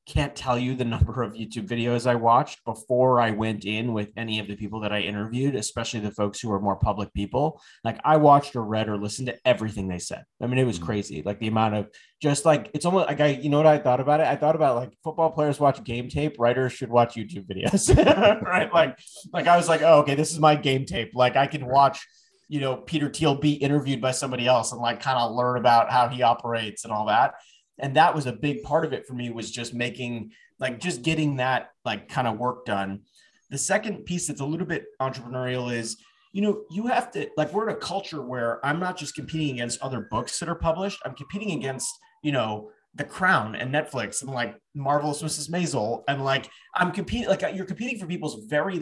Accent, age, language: American, 30-49, English